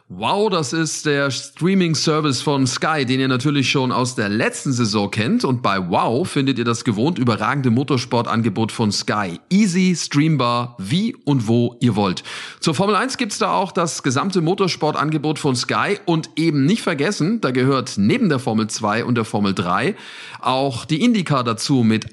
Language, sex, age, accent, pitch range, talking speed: German, male, 40-59, German, 120-160 Hz, 175 wpm